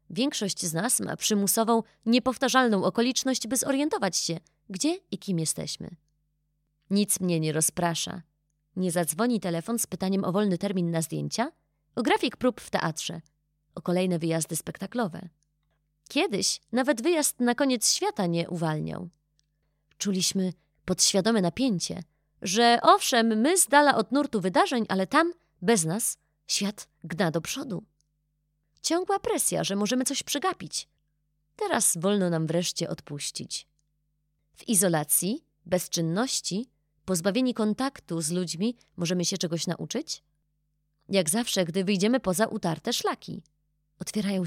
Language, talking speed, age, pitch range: Polish, 125 wpm, 20-39, 160-230 Hz